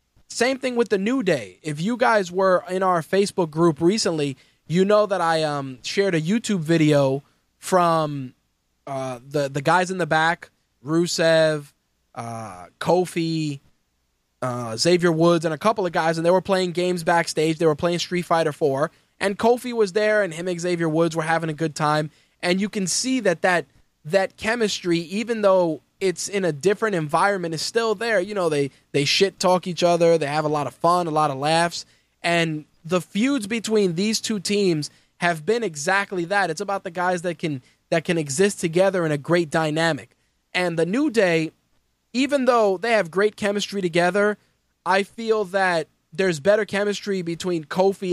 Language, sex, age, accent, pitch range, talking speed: English, male, 20-39, American, 160-195 Hz, 185 wpm